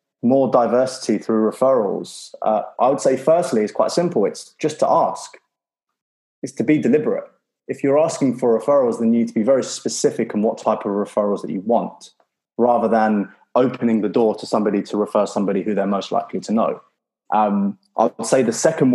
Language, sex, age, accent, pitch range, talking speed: English, male, 20-39, British, 105-120 Hz, 195 wpm